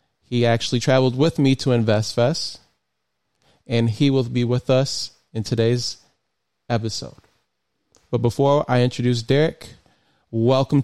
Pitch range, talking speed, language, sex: 120-145 Hz, 120 wpm, English, male